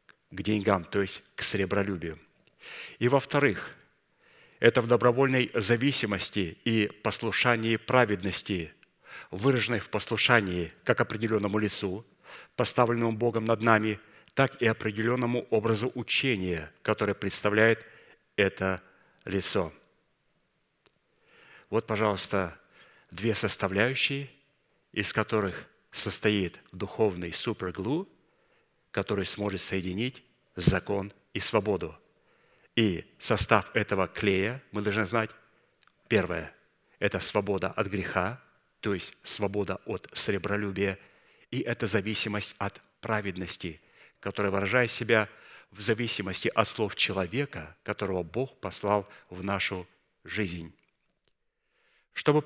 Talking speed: 100 wpm